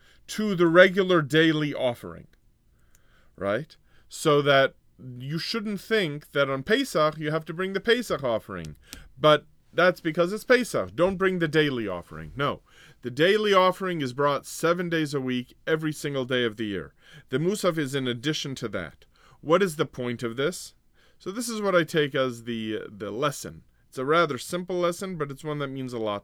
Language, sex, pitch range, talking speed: English, male, 130-175 Hz, 190 wpm